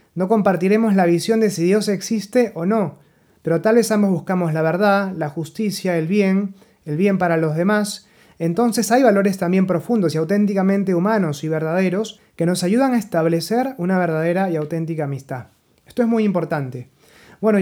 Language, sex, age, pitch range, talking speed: Spanish, male, 30-49, 165-210 Hz, 175 wpm